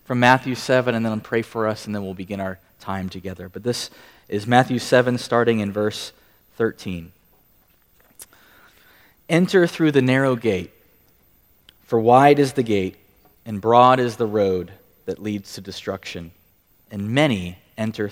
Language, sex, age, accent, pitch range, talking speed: English, male, 30-49, American, 95-120 Hz, 150 wpm